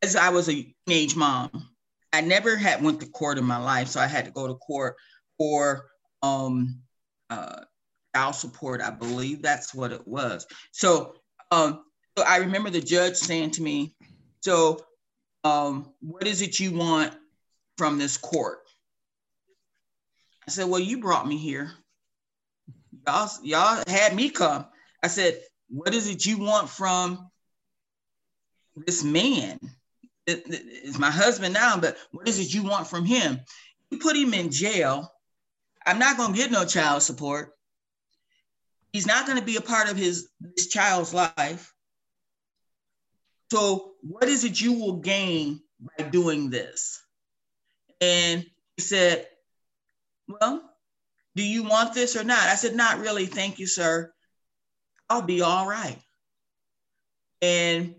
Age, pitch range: 40-59, 155-220 Hz